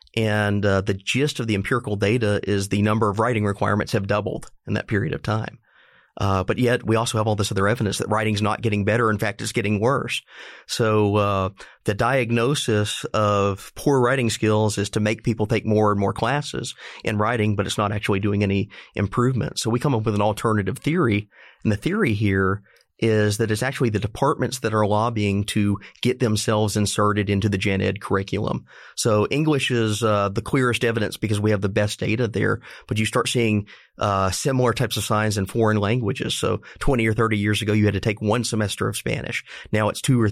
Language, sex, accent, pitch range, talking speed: English, male, American, 100-115 Hz, 210 wpm